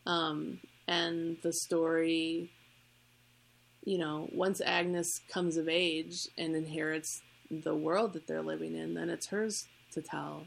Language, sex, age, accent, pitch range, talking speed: English, female, 30-49, American, 125-170 Hz, 140 wpm